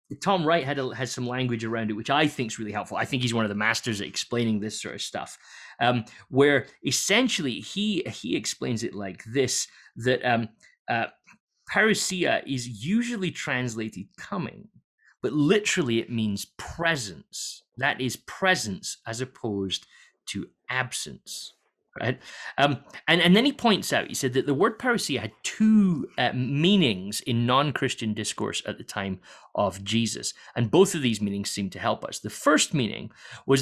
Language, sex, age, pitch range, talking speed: English, male, 30-49, 110-165 Hz, 170 wpm